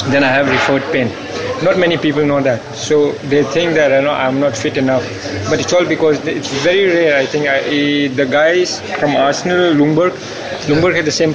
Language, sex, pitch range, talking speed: English, male, 140-170 Hz, 190 wpm